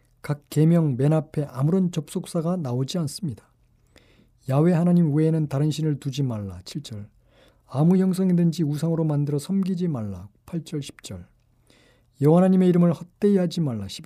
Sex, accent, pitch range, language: male, native, 120-170 Hz, Korean